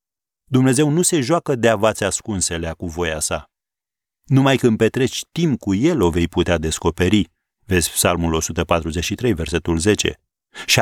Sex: male